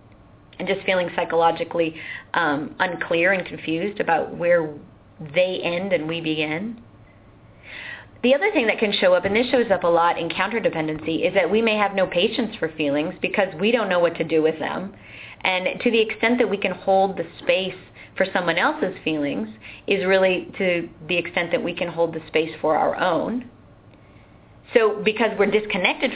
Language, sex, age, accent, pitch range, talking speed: English, female, 30-49, American, 160-195 Hz, 185 wpm